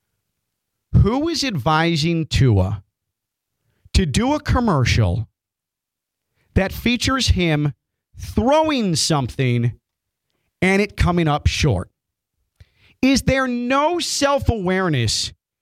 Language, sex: English, male